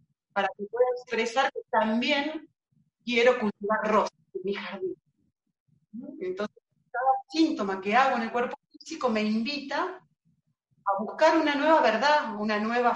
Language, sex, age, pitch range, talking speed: Spanish, female, 40-59, 175-250 Hz, 140 wpm